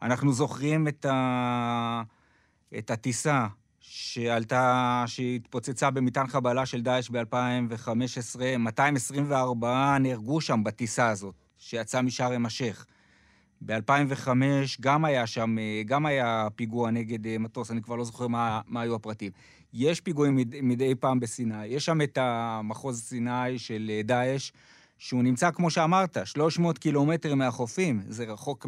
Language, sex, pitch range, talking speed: Hebrew, male, 120-140 Hz, 120 wpm